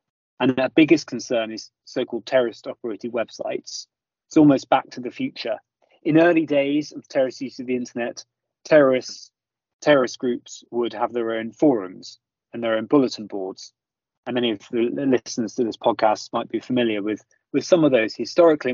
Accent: British